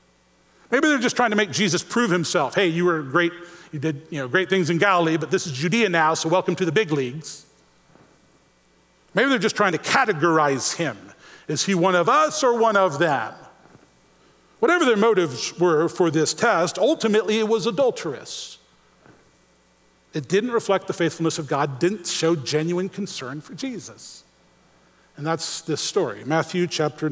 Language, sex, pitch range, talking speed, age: English, male, 150-225 Hz, 170 wpm, 40-59